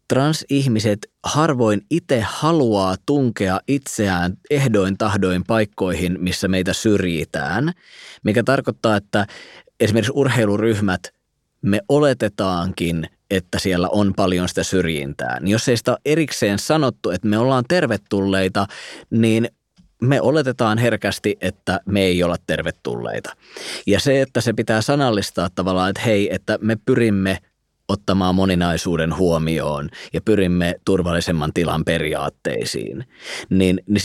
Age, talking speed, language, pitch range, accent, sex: 20-39, 115 wpm, Finnish, 95-120 Hz, native, male